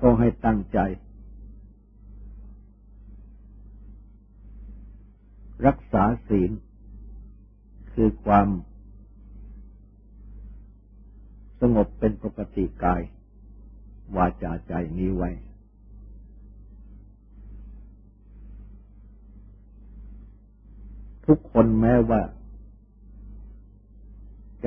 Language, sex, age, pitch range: Thai, male, 60-79, 100-105 Hz